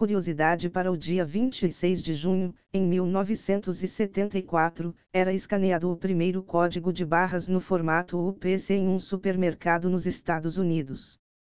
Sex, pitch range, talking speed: female, 170-190 Hz, 130 wpm